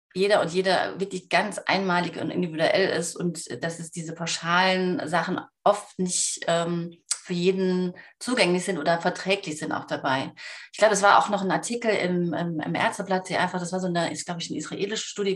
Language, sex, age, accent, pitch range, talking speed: German, female, 30-49, German, 165-190 Hz, 190 wpm